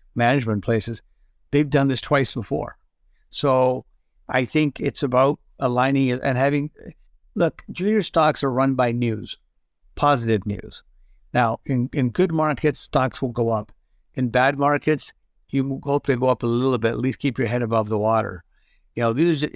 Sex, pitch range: male, 115-140 Hz